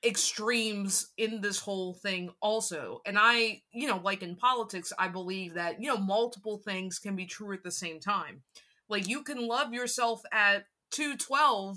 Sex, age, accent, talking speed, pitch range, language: female, 20-39, American, 175 wpm, 185-230 Hz, English